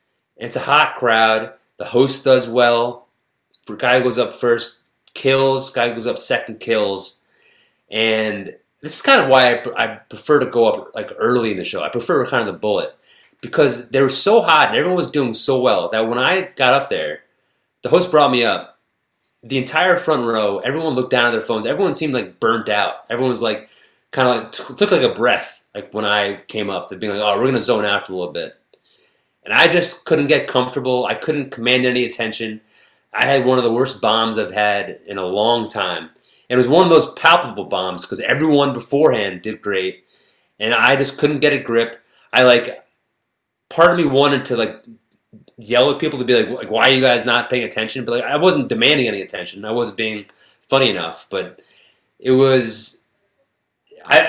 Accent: American